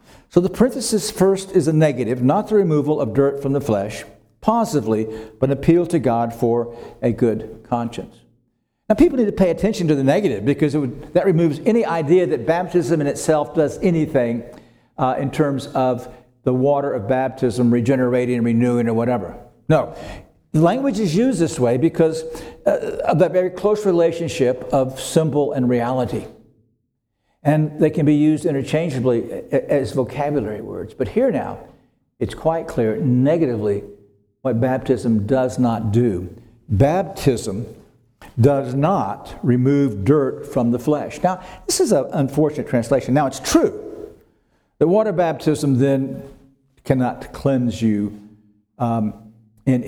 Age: 60-79